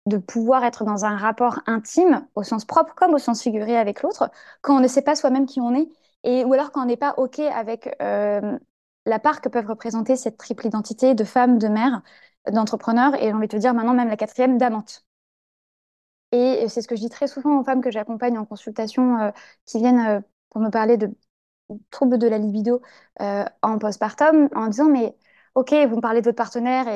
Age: 20-39